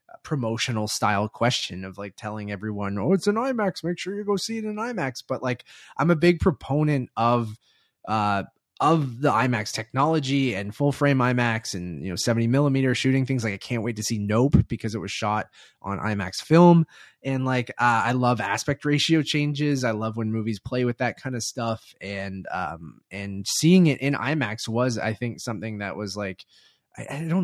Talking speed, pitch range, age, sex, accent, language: 195 wpm, 105-145 Hz, 20-39, male, American, English